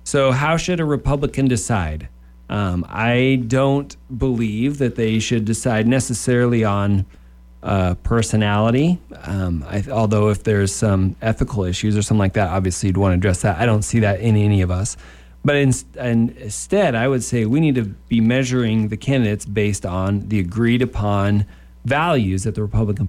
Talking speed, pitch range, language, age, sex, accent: 175 wpm, 95-125 Hz, English, 40-59, male, American